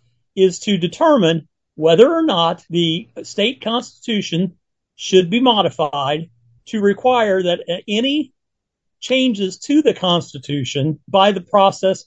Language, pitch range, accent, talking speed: English, 160-205 Hz, American, 115 wpm